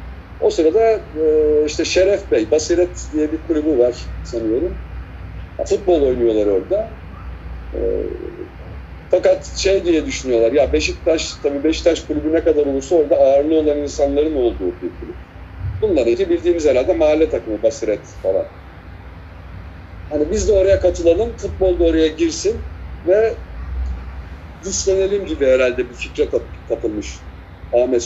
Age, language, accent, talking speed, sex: 50-69, Turkish, native, 130 wpm, male